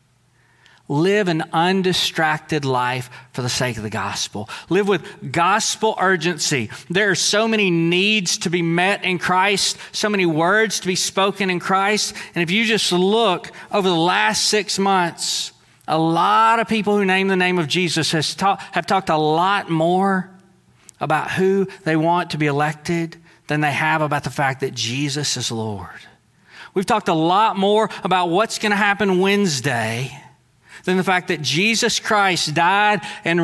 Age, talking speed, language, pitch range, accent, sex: 40-59, 165 wpm, English, 165-210 Hz, American, male